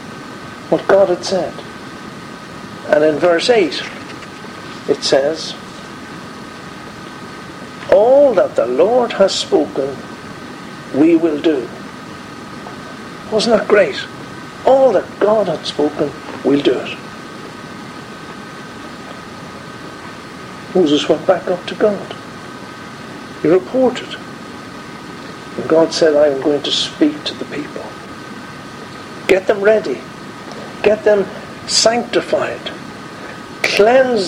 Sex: male